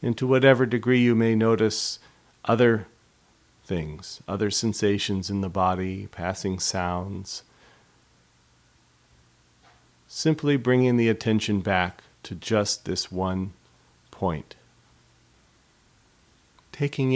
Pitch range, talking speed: 95-120 Hz, 95 wpm